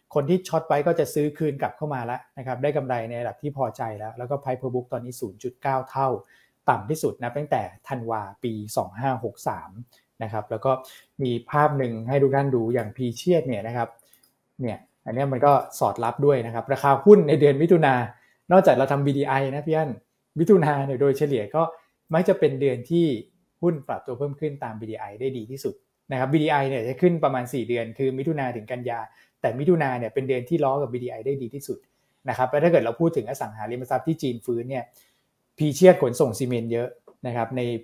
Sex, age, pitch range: male, 20-39, 120-150 Hz